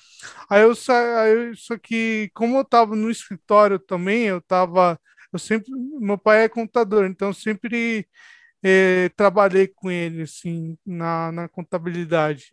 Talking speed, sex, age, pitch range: 145 wpm, male, 20-39, 180-215 Hz